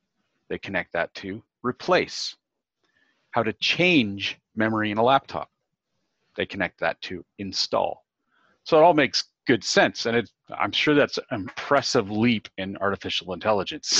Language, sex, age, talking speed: English, male, 40-59, 145 wpm